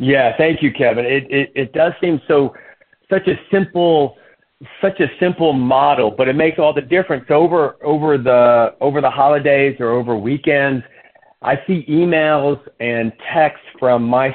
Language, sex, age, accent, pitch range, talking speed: English, male, 50-69, American, 120-150 Hz, 165 wpm